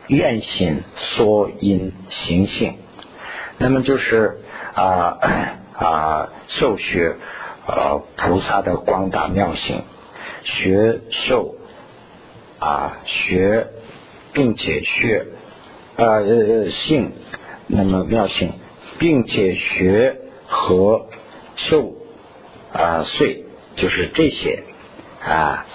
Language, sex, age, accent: Chinese, male, 50-69, native